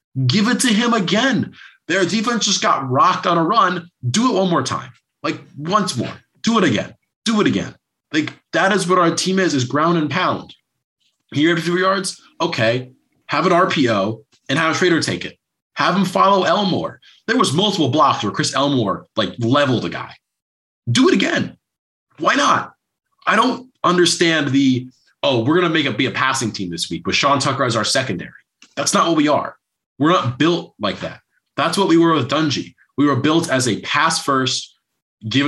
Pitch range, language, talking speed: 125-175 Hz, English, 200 wpm